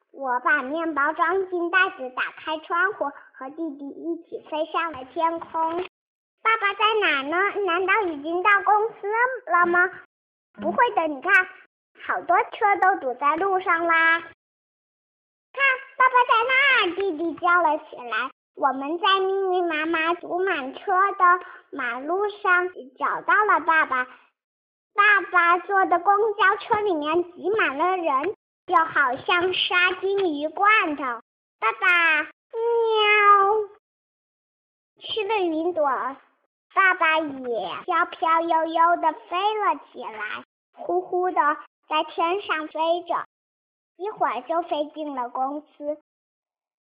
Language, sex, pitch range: Chinese, male, 310-385 Hz